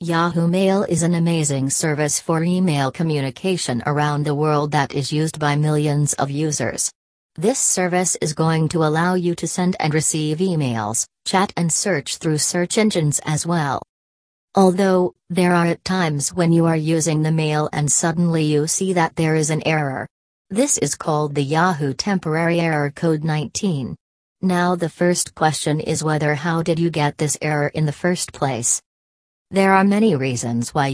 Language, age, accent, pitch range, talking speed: English, 40-59, American, 145-175 Hz, 175 wpm